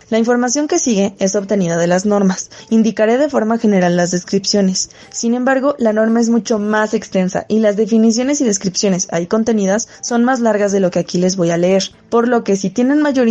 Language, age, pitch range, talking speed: Spanish, 20-39, 190-235 Hz, 210 wpm